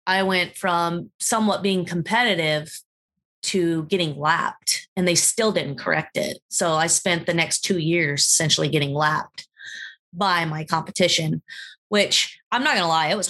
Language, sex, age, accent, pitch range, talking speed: English, female, 20-39, American, 155-185 Hz, 165 wpm